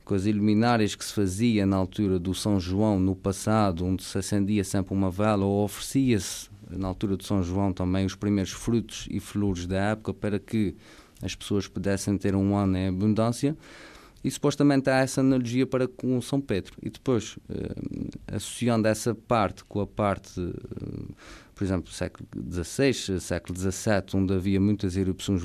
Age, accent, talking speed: 20-39, Portuguese, 175 wpm